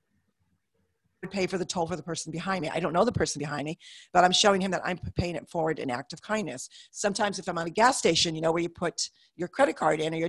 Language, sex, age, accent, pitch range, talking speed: English, female, 50-69, American, 175-215 Hz, 275 wpm